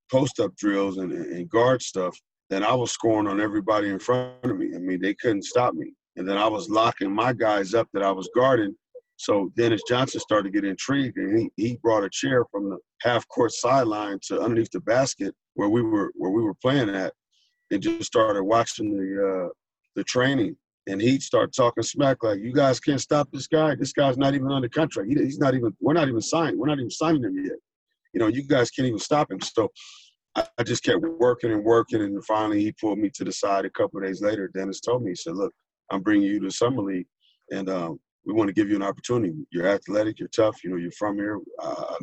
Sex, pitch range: male, 100-160 Hz